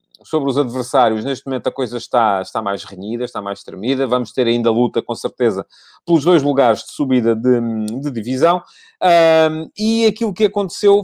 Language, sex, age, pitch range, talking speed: Portuguese, male, 40-59, 120-160 Hz, 175 wpm